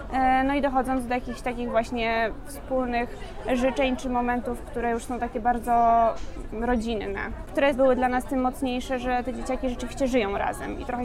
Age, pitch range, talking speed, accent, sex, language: 20-39, 245-275 Hz, 170 wpm, native, female, Polish